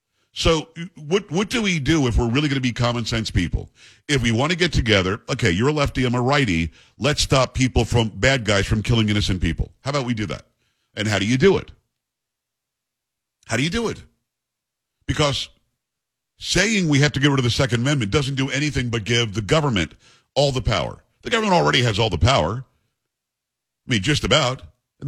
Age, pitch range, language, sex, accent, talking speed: 50-69, 110-140 Hz, English, male, American, 210 wpm